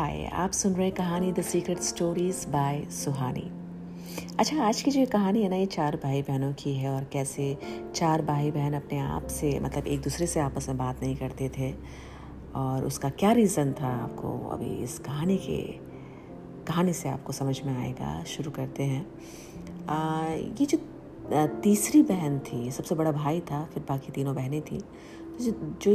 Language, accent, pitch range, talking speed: Hindi, native, 130-170 Hz, 180 wpm